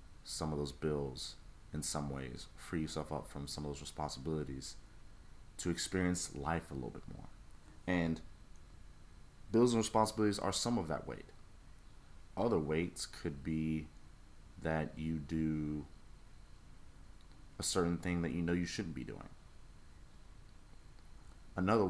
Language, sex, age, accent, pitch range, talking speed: English, male, 30-49, American, 75-85 Hz, 135 wpm